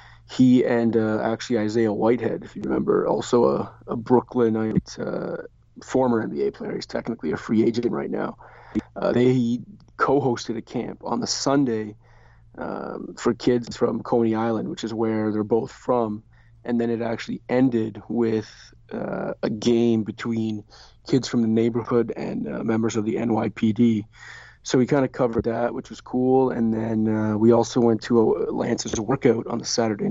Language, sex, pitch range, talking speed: English, male, 110-120 Hz, 170 wpm